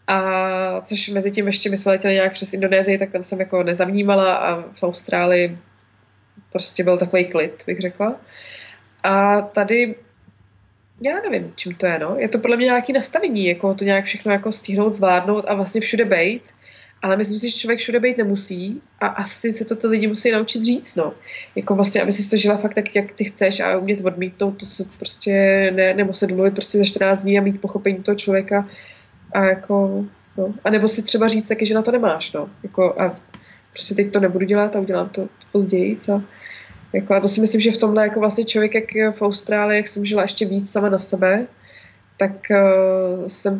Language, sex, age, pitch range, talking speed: Czech, female, 20-39, 185-210 Hz, 200 wpm